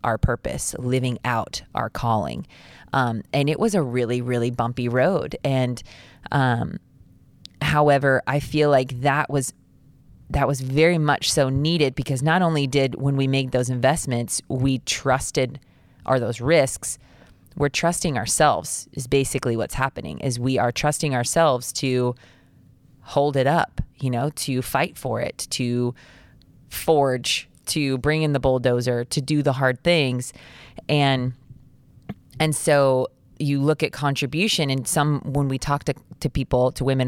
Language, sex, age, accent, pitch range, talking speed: English, female, 20-39, American, 125-145 Hz, 150 wpm